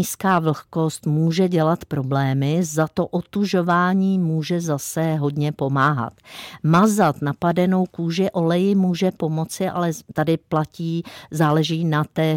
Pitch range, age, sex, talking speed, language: 145-180 Hz, 50-69, female, 115 wpm, Czech